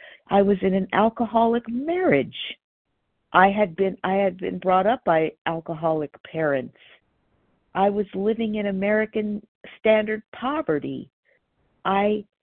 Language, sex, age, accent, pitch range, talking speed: English, female, 50-69, American, 175-225 Hz, 120 wpm